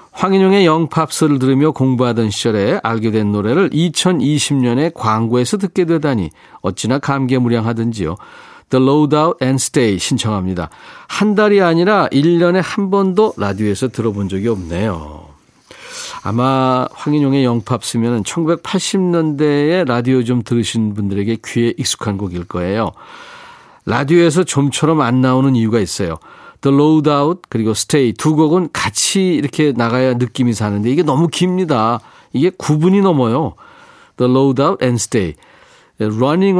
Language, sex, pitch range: Korean, male, 115-160 Hz